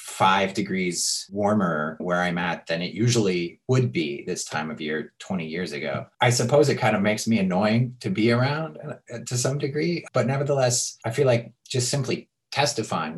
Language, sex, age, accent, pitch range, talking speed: English, male, 30-49, American, 100-135 Hz, 180 wpm